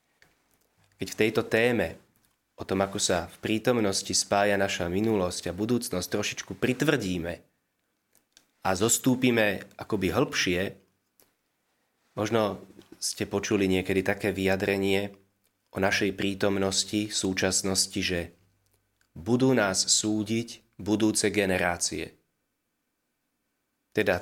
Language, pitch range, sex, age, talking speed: Slovak, 95-120 Hz, male, 30-49, 95 wpm